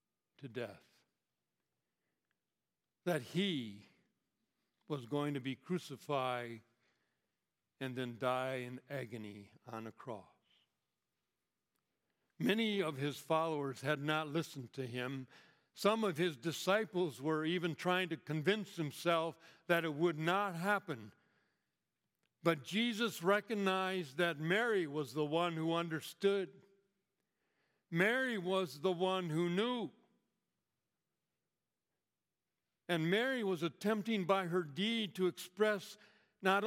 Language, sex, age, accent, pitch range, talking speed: English, male, 60-79, American, 145-200 Hz, 110 wpm